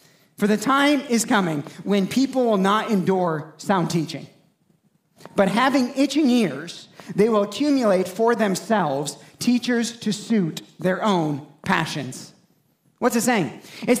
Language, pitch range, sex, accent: English, 210-280 Hz, male, American